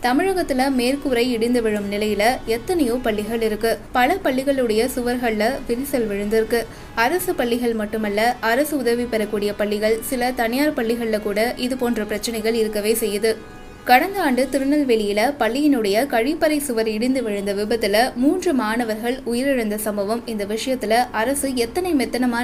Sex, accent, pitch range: female, native, 215-250 Hz